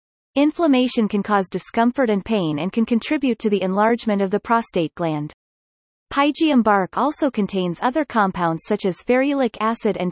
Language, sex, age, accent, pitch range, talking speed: English, female, 30-49, American, 185-255 Hz, 160 wpm